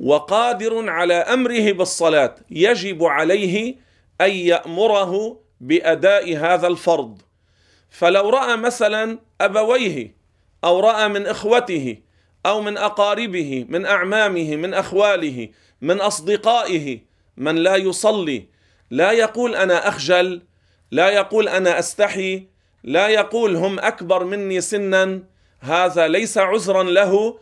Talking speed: 105 wpm